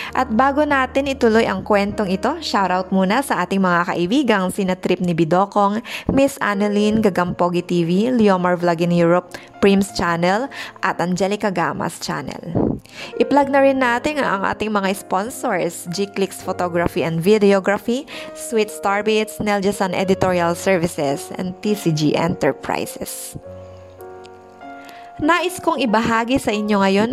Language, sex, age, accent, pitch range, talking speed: Filipino, female, 20-39, native, 180-230 Hz, 125 wpm